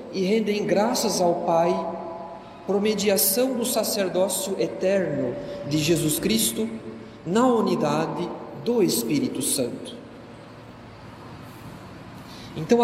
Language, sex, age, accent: Portuguese, male, 40-59, Brazilian